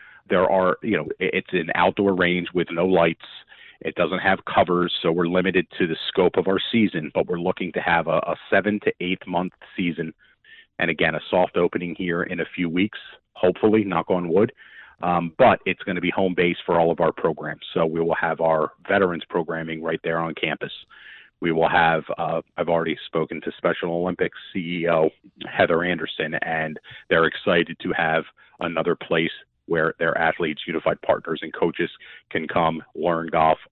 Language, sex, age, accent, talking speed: English, male, 40-59, American, 185 wpm